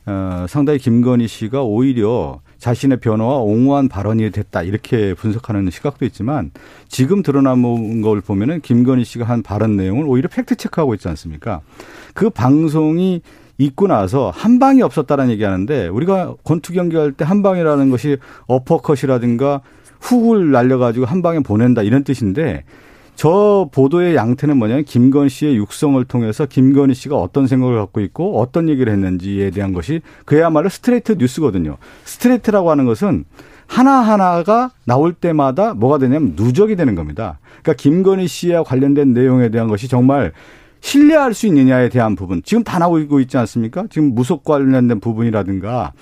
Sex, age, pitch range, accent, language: male, 50-69, 110-160 Hz, native, Korean